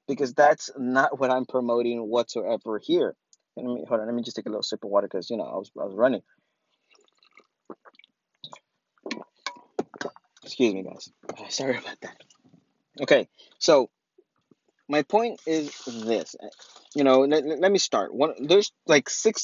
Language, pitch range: English, 125-170 Hz